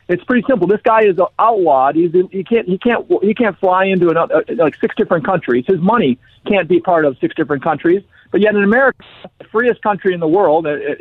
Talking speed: 225 wpm